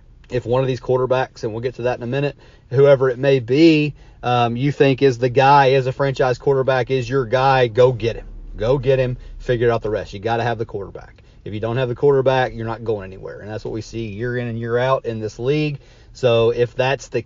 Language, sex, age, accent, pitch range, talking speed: English, male, 30-49, American, 115-135 Hz, 255 wpm